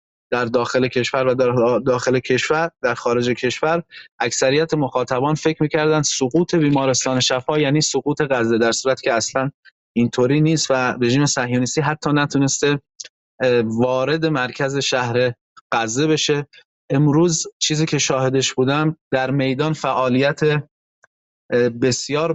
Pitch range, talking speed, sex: 125-150 Hz, 120 wpm, male